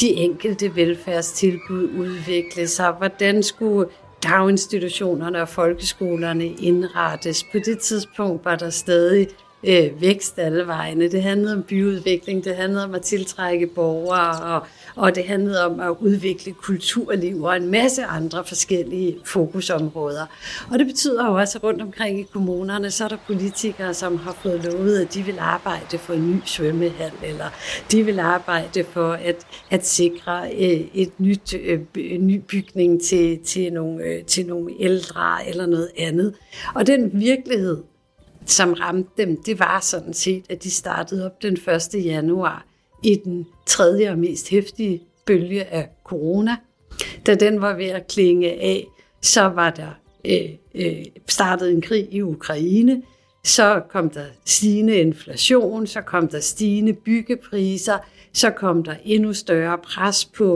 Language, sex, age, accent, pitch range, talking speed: Danish, female, 60-79, native, 170-200 Hz, 150 wpm